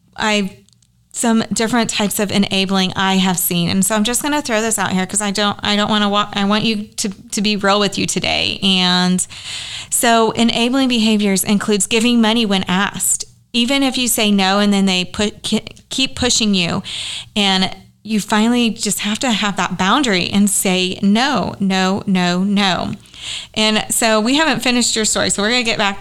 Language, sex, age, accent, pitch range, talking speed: English, female, 30-49, American, 190-225 Hz, 200 wpm